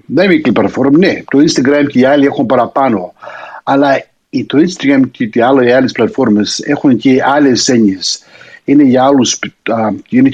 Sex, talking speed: male, 170 wpm